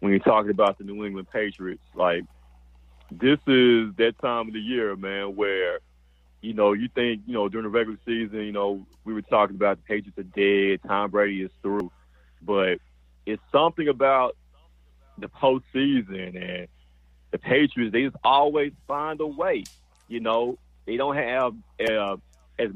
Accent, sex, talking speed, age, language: American, male, 170 wpm, 30-49, English